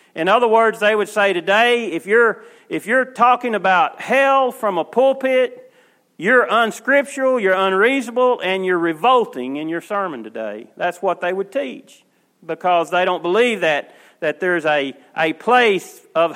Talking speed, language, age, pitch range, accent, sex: 160 wpm, English, 40-59, 190-260 Hz, American, male